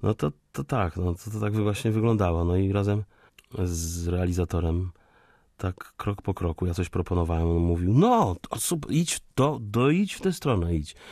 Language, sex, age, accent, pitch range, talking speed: Polish, male, 30-49, native, 85-105 Hz, 195 wpm